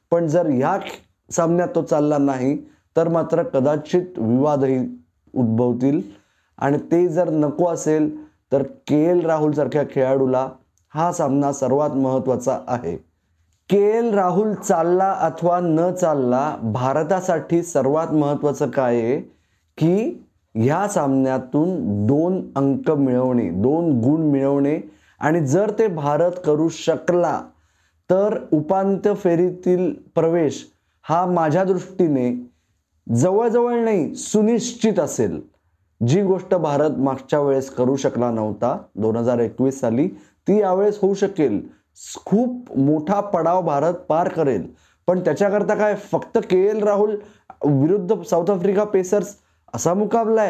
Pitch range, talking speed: 130-190 Hz, 110 wpm